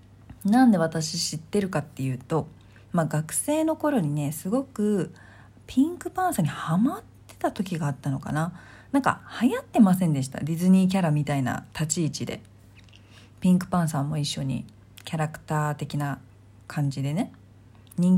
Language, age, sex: Japanese, 40-59, female